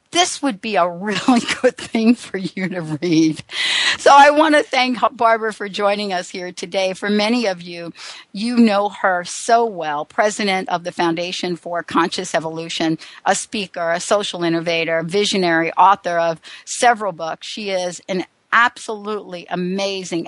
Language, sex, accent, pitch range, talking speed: English, female, American, 175-225 Hz, 155 wpm